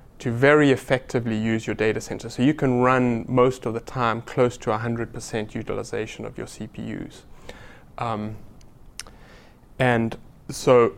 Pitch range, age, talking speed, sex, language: 110-130 Hz, 20-39, 150 wpm, male, English